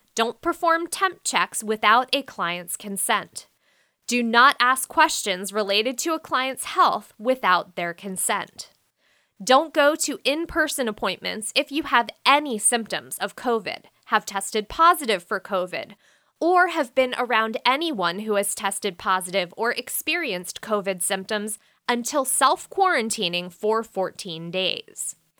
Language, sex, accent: English, female, American